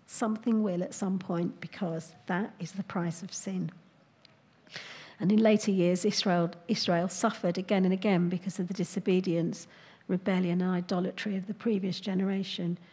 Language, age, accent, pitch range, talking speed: English, 50-69, British, 180-210 Hz, 155 wpm